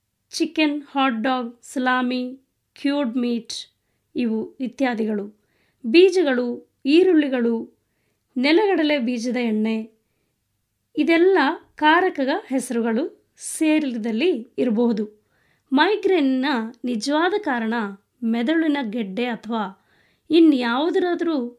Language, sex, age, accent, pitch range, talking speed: Kannada, female, 20-39, native, 235-310 Hz, 65 wpm